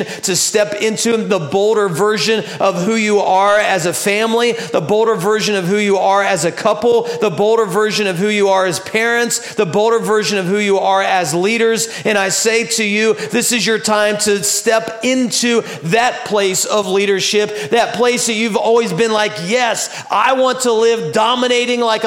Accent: American